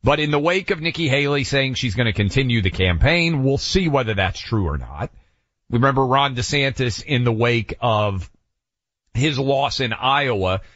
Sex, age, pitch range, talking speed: male, 40-59, 105-135 Hz, 180 wpm